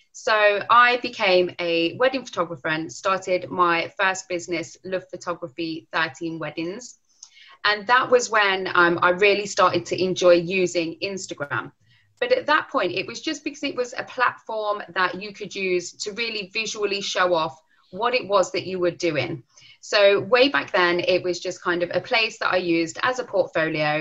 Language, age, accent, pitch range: English, 20-39, British, 175-225 Hz